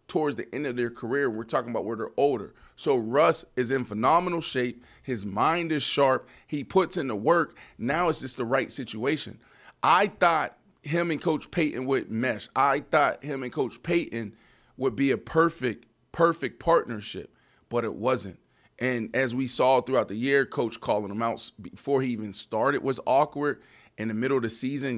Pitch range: 120-140 Hz